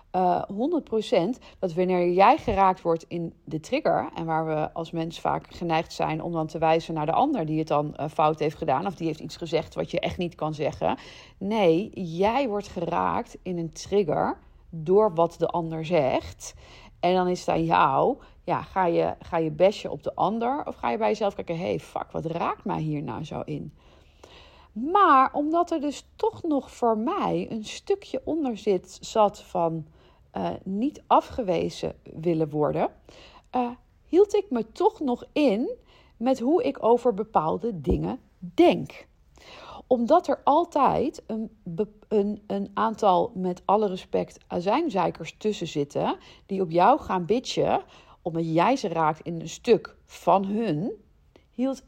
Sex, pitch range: female, 165-250 Hz